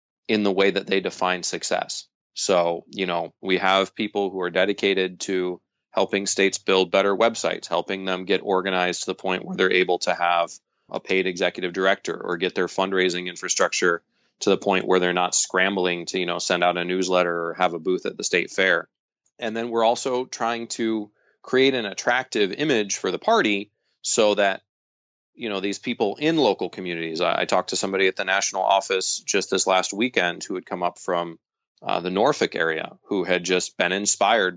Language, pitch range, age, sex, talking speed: English, 90-100 Hz, 20-39, male, 200 wpm